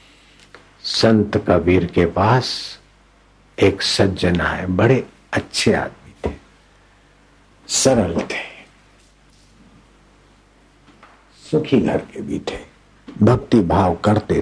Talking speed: 85 wpm